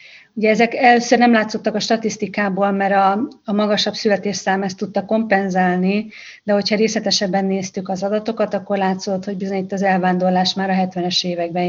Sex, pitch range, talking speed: female, 185-210 Hz, 165 wpm